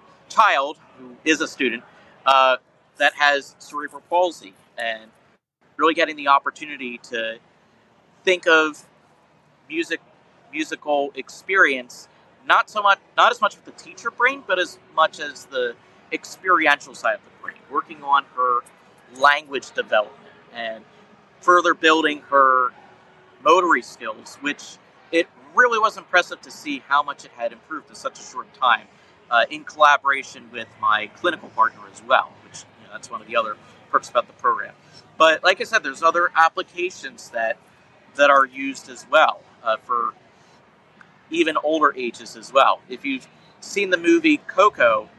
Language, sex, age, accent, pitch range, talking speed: English, male, 40-59, American, 140-205 Hz, 155 wpm